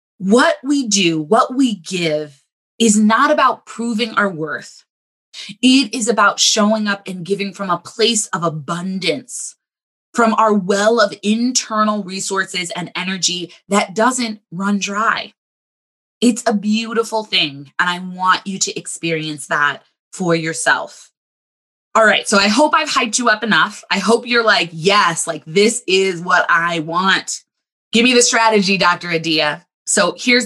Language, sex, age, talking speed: English, female, 20-39, 155 wpm